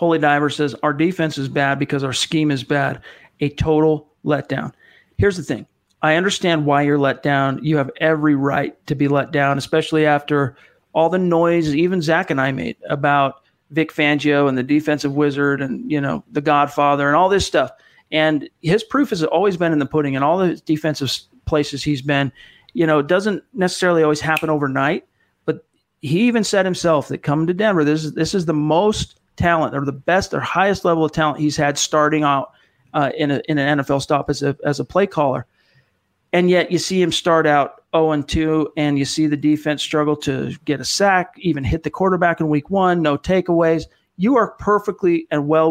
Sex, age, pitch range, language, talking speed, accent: male, 40-59, 145-170 Hz, English, 205 wpm, American